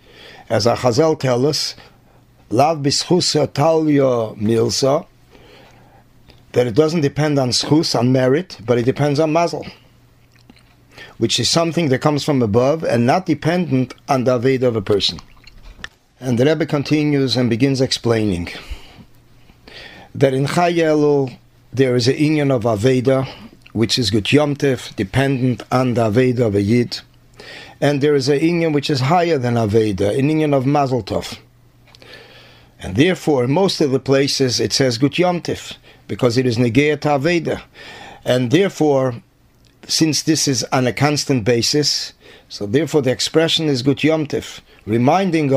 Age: 40-59